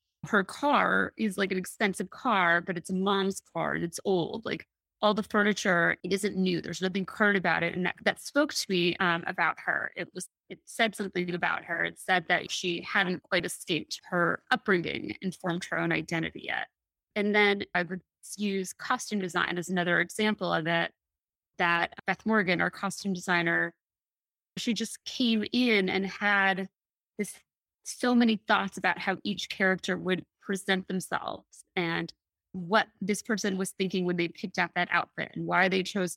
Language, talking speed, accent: English, 180 wpm, American